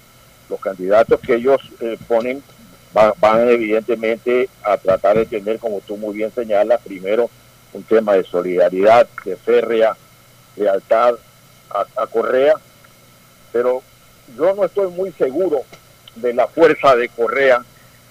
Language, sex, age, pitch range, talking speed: Spanish, male, 60-79, 110-140 Hz, 135 wpm